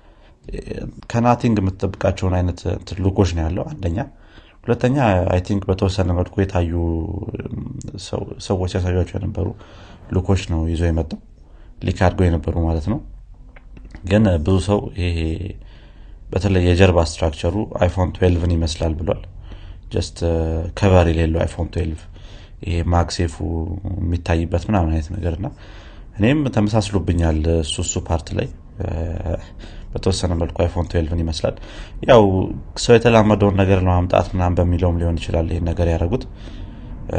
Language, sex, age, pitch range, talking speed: Amharic, male, 30-49, 85-100 Hz, 110 wpm